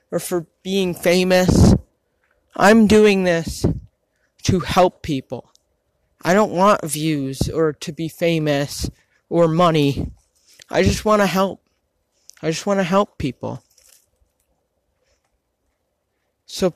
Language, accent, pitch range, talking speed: English, American, 150-200 Hz, 115 wpm